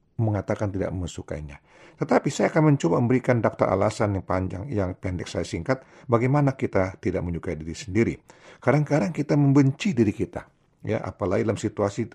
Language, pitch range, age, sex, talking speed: Indonesian, 95-130 Hz, 50-69, male, 155 wpm